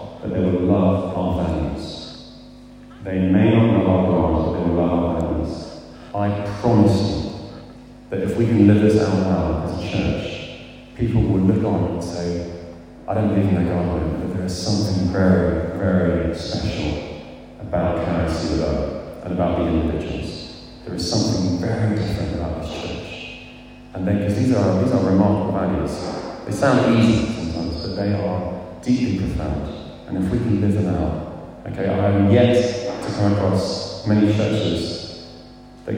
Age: 30-49